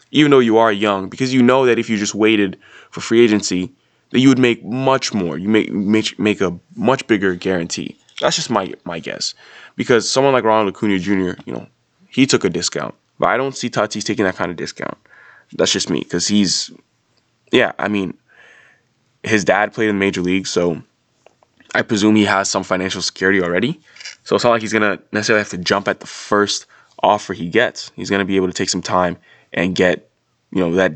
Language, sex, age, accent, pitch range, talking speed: English, male, 20-39, American, 90-110 Hz, 215 wpm